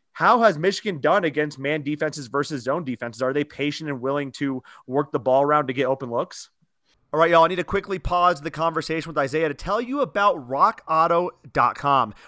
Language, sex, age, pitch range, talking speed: English, male, 30-49, 145-180 Hz, 200 wpm